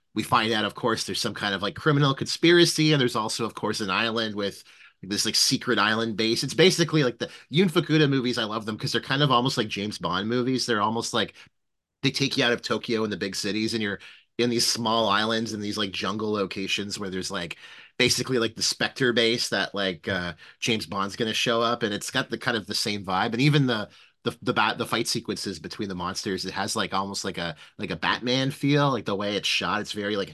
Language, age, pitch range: English, 30-49, 100-125 Hz